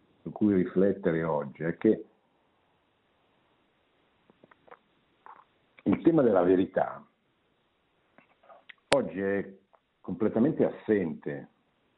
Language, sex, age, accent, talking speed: Italian, male, 60-79, native, 70 wpm